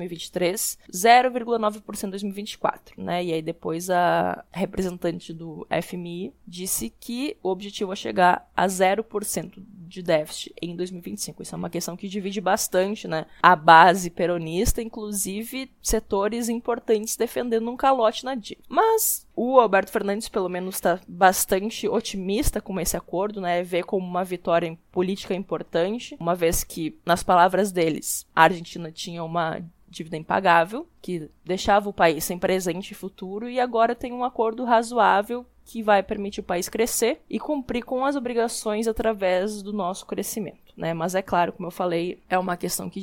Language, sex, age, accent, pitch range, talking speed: Portuguese, female, 20-39, Brazilian, 175-220 Hz, 160 wpm